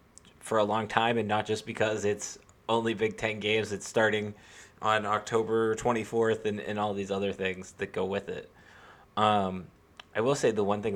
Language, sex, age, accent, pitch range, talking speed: English, male, 20-39, American, 95-110 Hz, 190 wpm